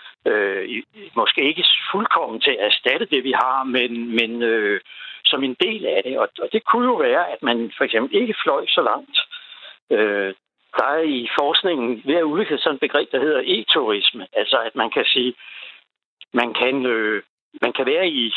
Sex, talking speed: male, 185 wpm